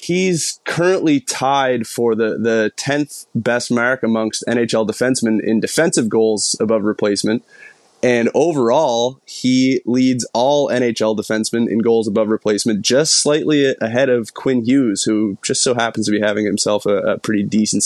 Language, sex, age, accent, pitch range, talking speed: English, male, 20-39, American, 110-130 Hz, 155 wpm